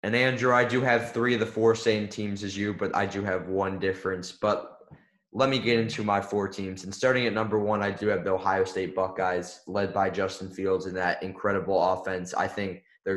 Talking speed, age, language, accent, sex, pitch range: 230 wpm, 20-39, English, American, male, 95-110 Hz